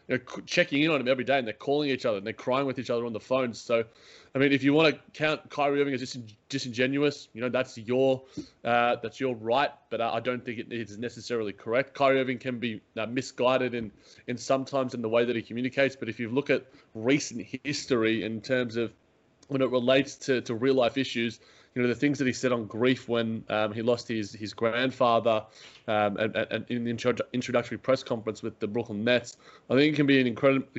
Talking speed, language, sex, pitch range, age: 225 wpm, English, male, 115-135 Hz, 20-39